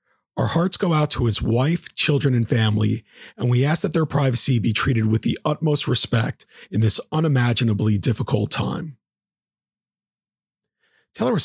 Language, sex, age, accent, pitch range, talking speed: English, male, 40-59, American, 115-150 Hz, 150 wpm